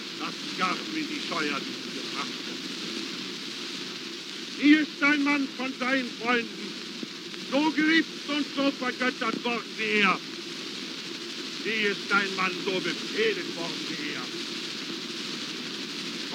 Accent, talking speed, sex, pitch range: German, 115 wpm, male, 250-295 Hz